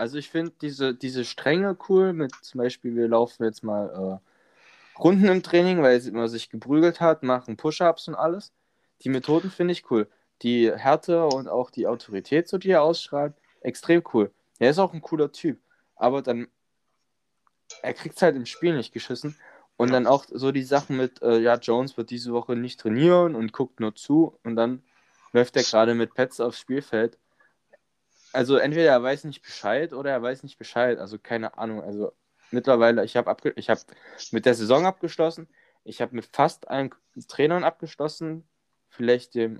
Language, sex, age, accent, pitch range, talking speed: German, male, 10-29, German, 115-155 Hz, 185 wpm